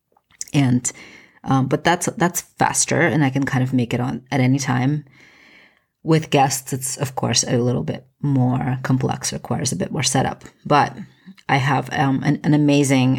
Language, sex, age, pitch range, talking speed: English, female, 20-39, 130-140 Hz, 175 wpm